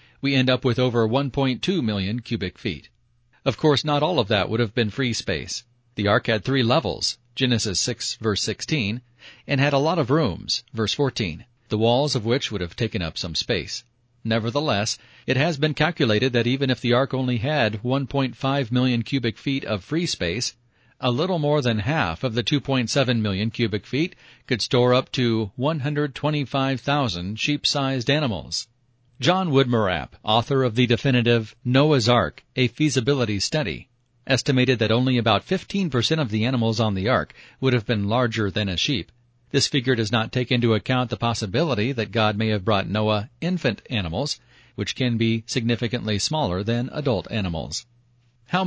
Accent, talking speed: American, 170 wpm